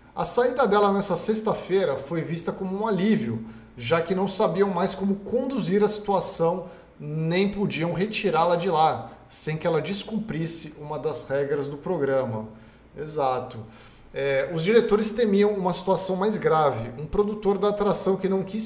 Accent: Brazilian